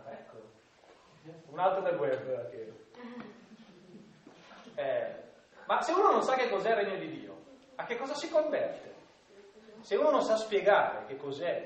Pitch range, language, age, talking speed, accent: 160-260 Hz, Italian, 30-49, 150 wpm, native